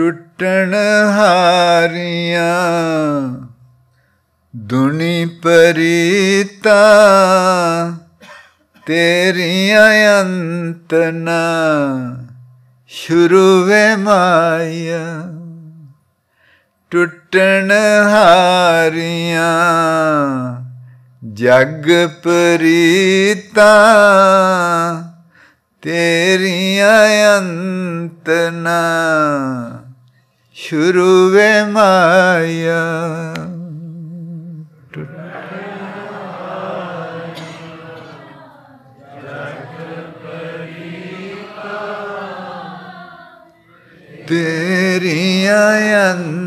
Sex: male